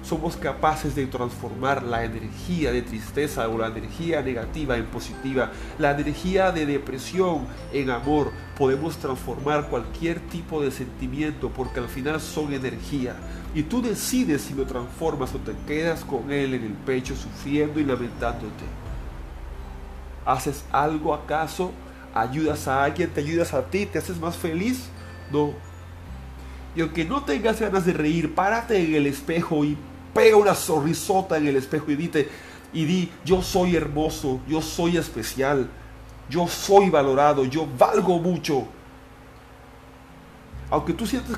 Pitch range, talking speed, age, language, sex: 115-160 Hz, 145 wpm, 40-59, Spanish, male